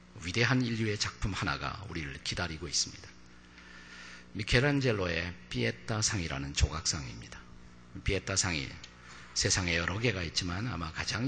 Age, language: 50-69, Korean